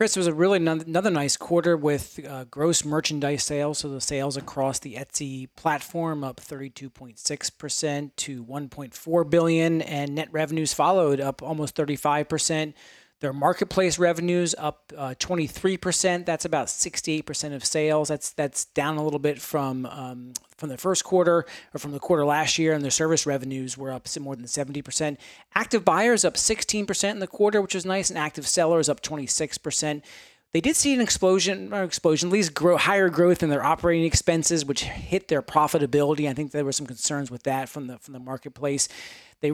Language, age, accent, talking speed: English, 30-49, American, 180 wpm